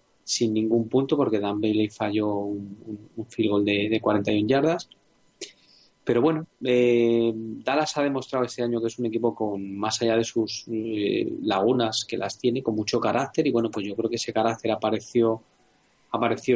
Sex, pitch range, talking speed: male, 105-120 Hz, 185 wpm